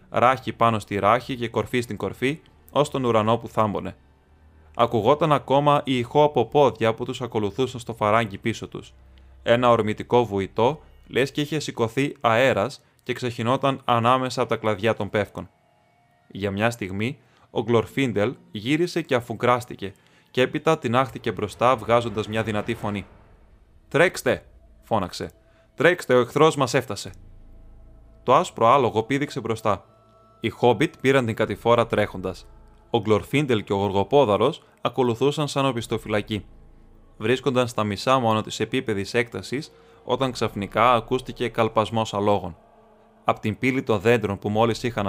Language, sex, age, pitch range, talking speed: Greek, male, 20-39, 105-130 Hz, 135 wpm